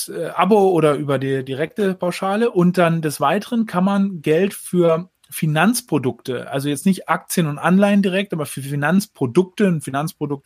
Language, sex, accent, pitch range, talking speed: German, male, German, 140-180 Hz, 155 wpm